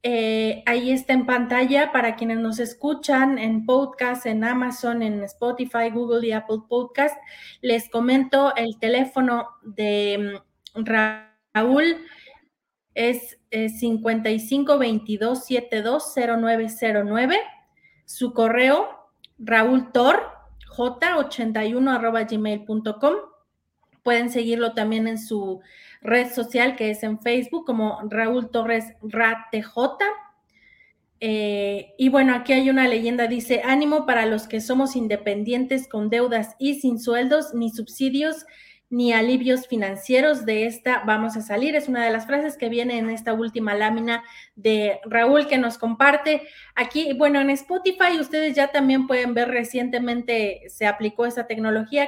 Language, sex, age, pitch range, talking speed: Spanish, female, 30-49, 225-265 Hz, 125 wpm